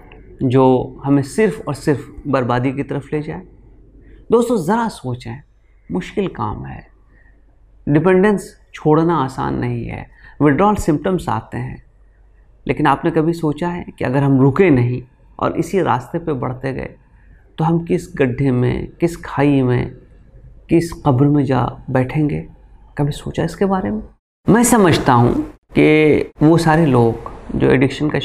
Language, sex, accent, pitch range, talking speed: Hindi, male, native, 125-165 Hz, 145 wpm